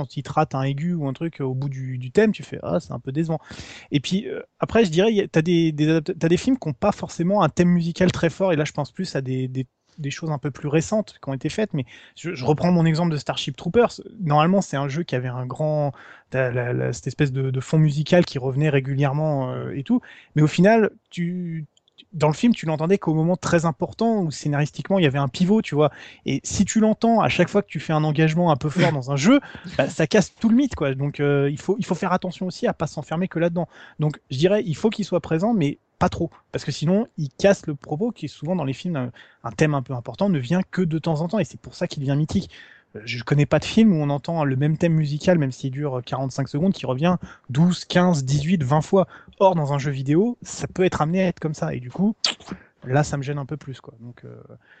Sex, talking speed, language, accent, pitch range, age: male, 275 wpm, French, French, 140-185 Hz, 20-39